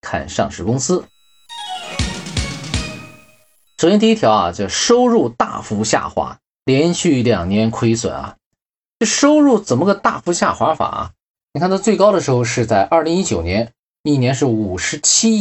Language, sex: Chinese, male